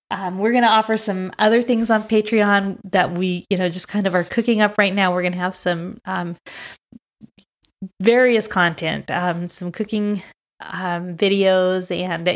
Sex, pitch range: female, 180-210 Hz